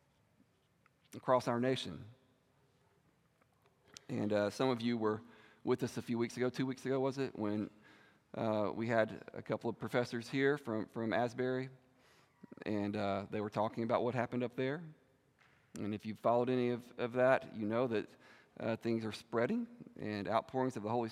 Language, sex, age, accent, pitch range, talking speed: English, male, 40-59, American, 110-140 Hz, 175 wpm